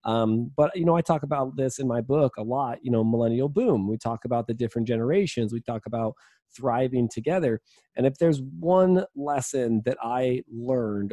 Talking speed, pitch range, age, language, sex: 195 wpm, 110-140 Hz, 20-39, English, male